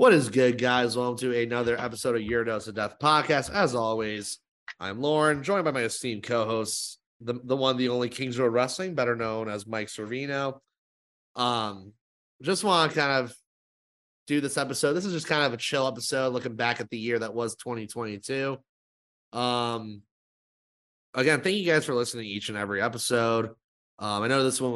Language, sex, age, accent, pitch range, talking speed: English, male, 30-49, American, 110-130 Hz, 185 wpm